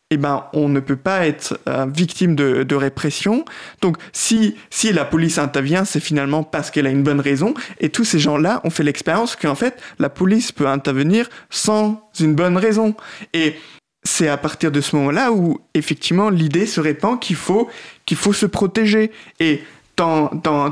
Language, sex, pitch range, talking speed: French, male, 150-205 Hz, 180 wpm